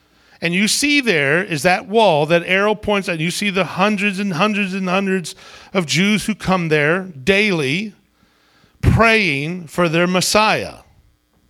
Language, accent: English, American